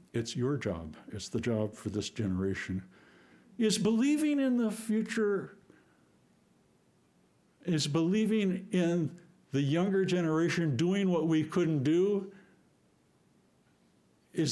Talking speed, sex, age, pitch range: 110 wpm, male, 60-79, 130-195 Hz